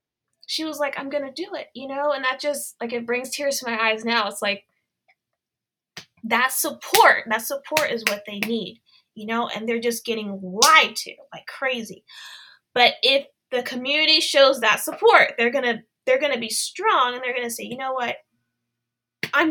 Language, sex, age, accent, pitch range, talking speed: English, female, 20-39, American, 205-285 Hz, 200 wpm